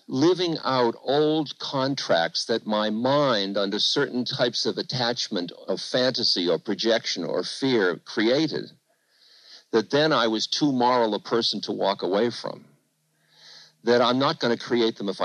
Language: English